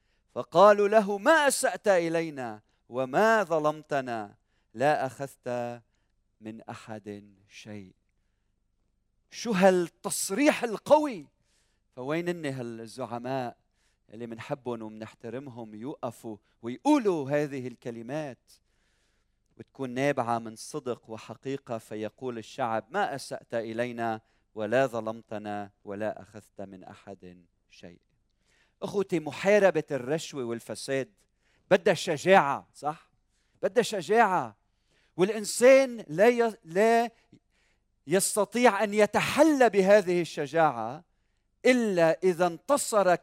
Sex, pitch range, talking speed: male, 110-175 Hz, 85 wpm